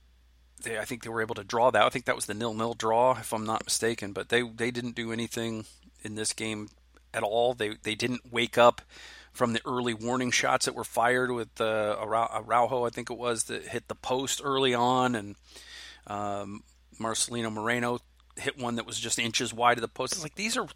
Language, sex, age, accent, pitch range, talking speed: English, male, 40-59, American, 110-130 Hz, 215 wpm